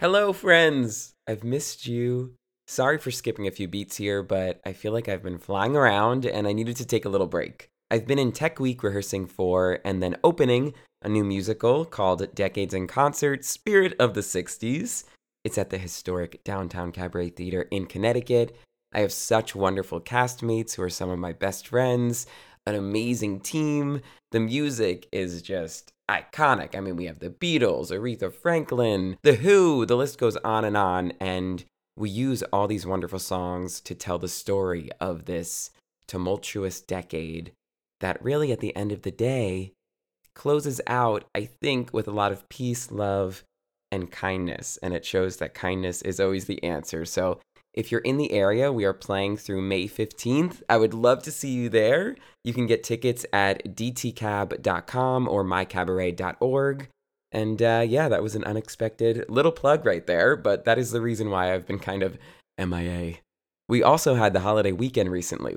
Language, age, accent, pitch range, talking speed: English, 20-39, American, 95-120 Hz, 180 wpm